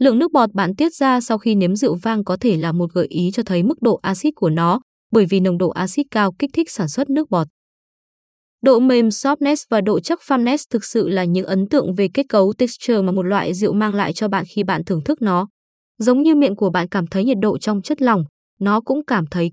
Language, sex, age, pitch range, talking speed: Vietnamese, female, 20-39, 185-255 Hz, 250 wpm